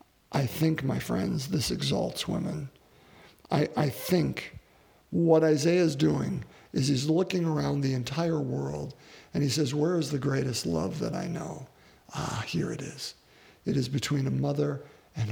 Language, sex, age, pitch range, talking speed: English, male, 50-69, 140-165 Hz, 165 wpm